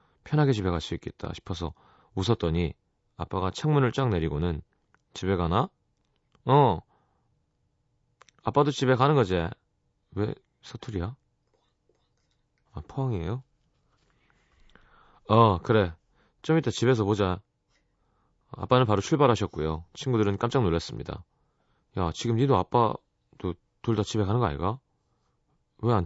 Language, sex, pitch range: Korean, male, 95-130 Hz